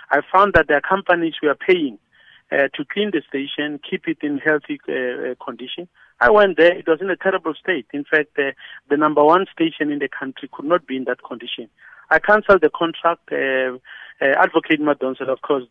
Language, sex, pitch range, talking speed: English, male, 140-185 Hz, 215 wpm